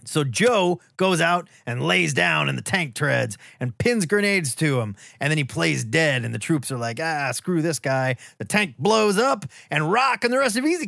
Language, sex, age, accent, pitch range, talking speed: English, male, 30-49, American, 125-175 Hz, 225 wpm